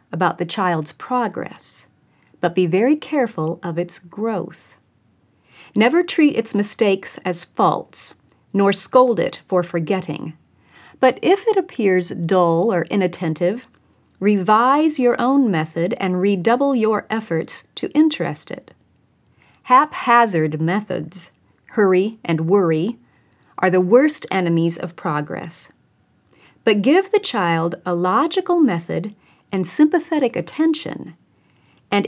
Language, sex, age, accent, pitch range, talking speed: English, female, 40-59, American, 170-230 Hz, 115 wpm